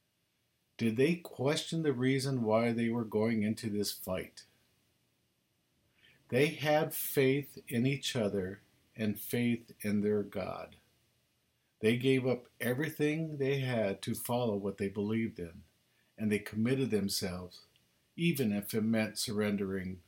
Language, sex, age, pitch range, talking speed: English, male, 50-69, 100-130 Hz, 130 wpm